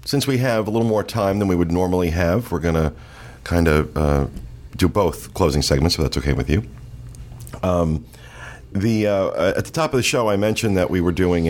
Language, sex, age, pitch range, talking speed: English, male, 50-69, 80-105 Hz, 220 wpm